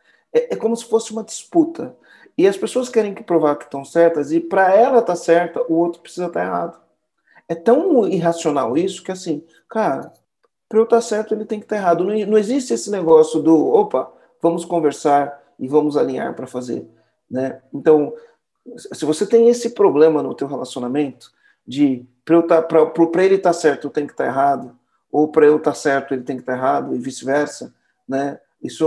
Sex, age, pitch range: male, 40-59, 155-235 Hz